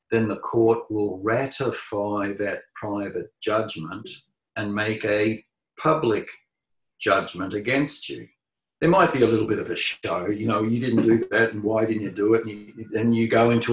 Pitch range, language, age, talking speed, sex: 110-135 Hz, English, 50-69, 190 wpm, male